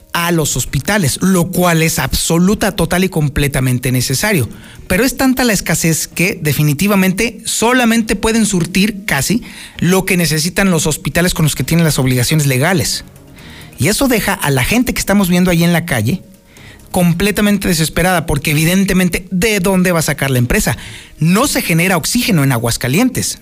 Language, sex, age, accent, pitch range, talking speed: Spanish, male, 40-59, Mexican, 155-210 Hz, 165 wpm